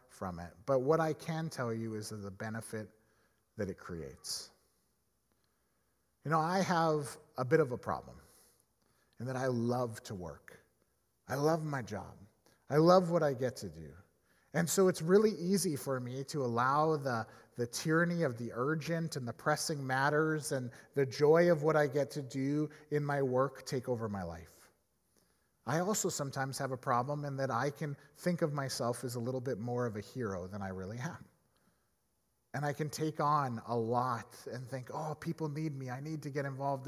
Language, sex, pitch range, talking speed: English, male, 115-150 Hz, 195 wpm